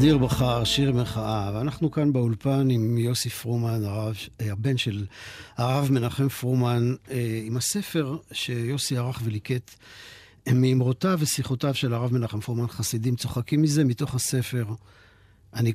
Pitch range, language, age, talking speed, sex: 105-135 Hz, Hebrew, 50-69, 125 wpm, male